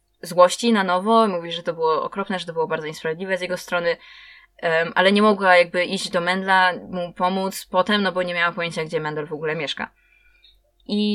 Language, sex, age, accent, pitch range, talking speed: Polish, female, 20-39, native, 160-200 Hz, 200 wpm